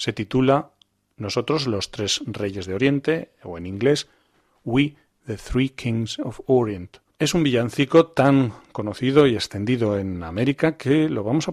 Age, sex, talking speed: 40-59, male, 155 wpm